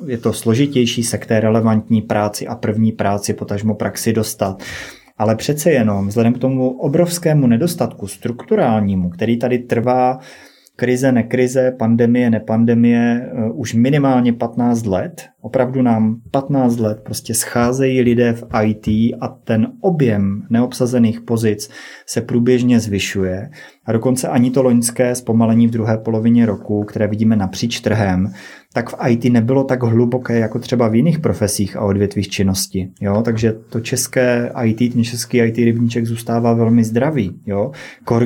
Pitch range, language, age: 110-120 Hz, Czech, 30-49